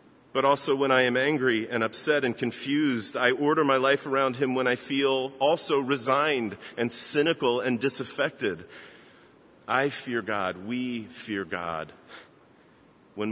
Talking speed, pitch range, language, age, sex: 145 wpm, 110-145 Hz, English, 40-59, male